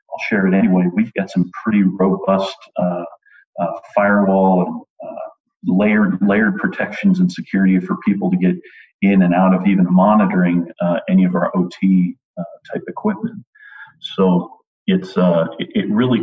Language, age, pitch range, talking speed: English, 40-59, 90-100 Hz, 160 wpm